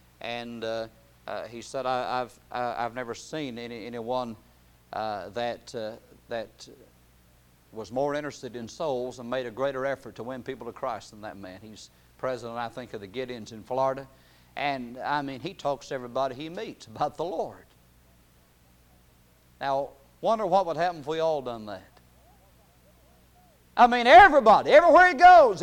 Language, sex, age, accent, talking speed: English, male, 50-69, American, 165 wpm